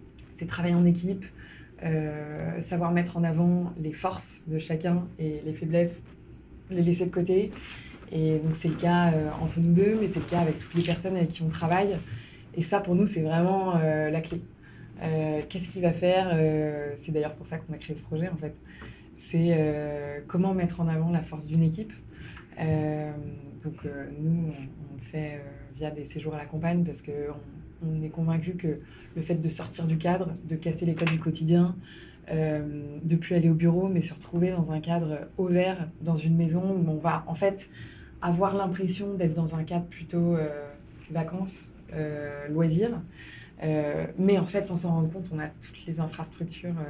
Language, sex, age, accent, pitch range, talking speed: French, female, 20-39, French, 155-175 Hz, 200 wpm